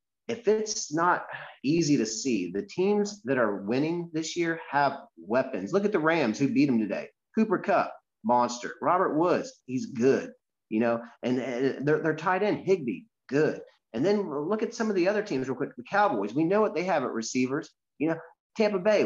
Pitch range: 120-185 Hz